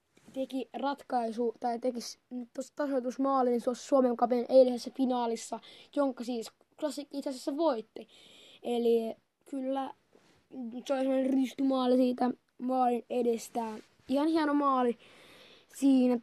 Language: Finnish